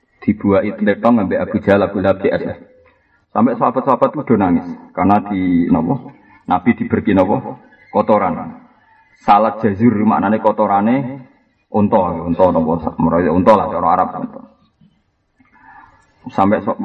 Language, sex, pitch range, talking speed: Indonesian, male, 110-160 Hz, 110 wpm